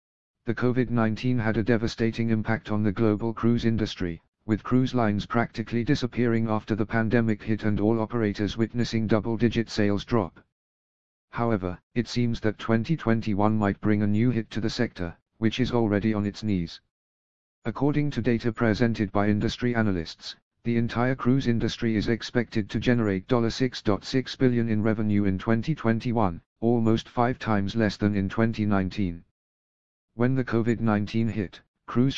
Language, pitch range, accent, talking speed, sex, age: English, 105-120 Hz, British, 145 wpm, male, 50-69